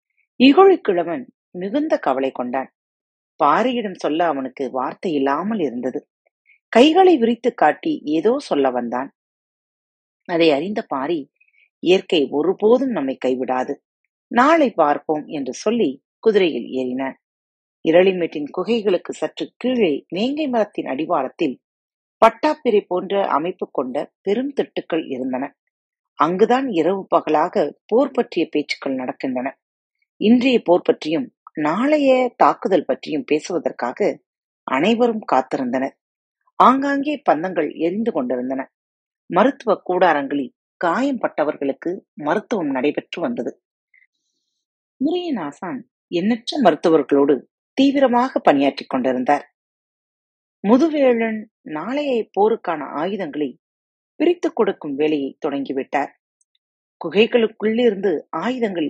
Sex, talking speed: female, 85 wpm